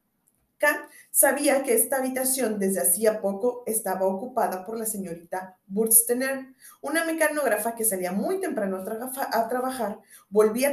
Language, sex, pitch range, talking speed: Spanish, female, 195-255 Hz, 140 wpm